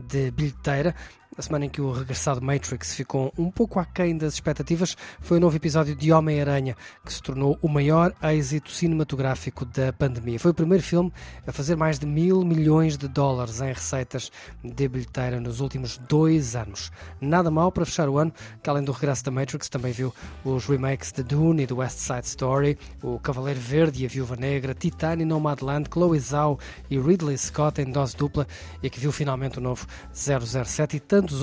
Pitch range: 125-155 Hz